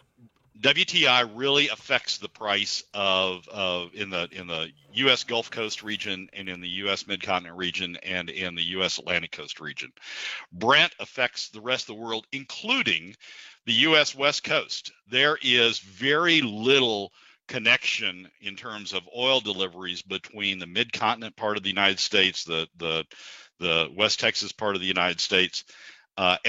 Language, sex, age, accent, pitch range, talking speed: English, male, 50-69, American, 90-120 Hz, 155 wpm